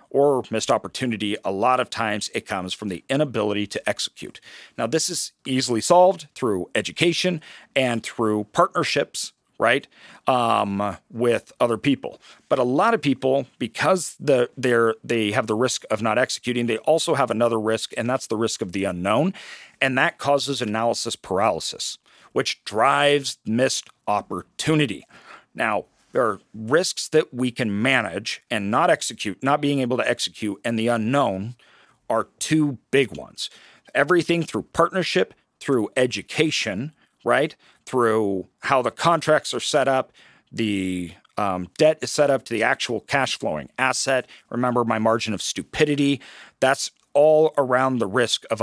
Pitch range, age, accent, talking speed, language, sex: 110-150 Hz, 40-59, American, 150 wpm, English, male